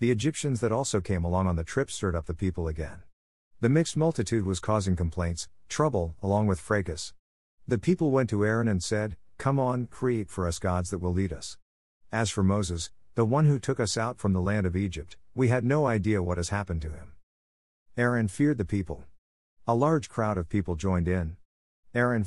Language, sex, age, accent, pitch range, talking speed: English, male, 50-69, American, 85-120 Hz, 205 wpm